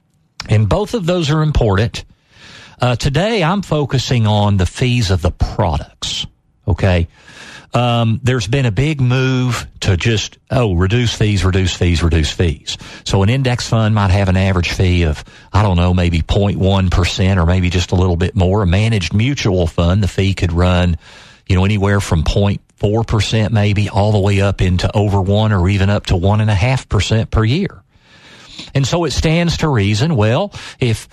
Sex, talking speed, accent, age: male, 175 wpm, American, 50-69